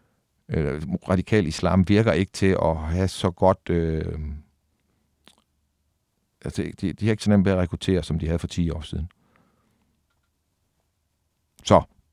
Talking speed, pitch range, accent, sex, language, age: 140 wpm, 85-105 Hz, native, male, Danish, 60-79